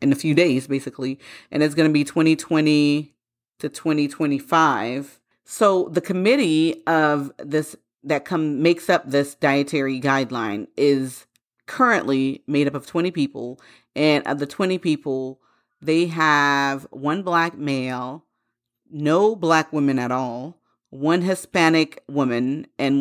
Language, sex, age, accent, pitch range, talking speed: English, female, 30-49, American, 135-160 Hz, 135 wpm